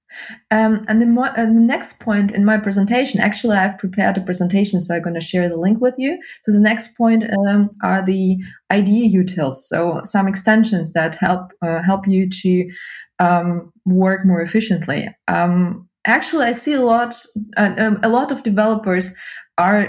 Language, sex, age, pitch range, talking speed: English, female, 20-39, 180-220 Hz, 180 wpm